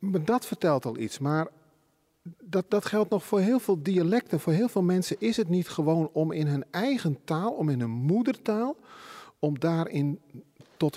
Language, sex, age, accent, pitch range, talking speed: Dutch, male, 40-59, Dutch, 145-210 Hz, 180 wpm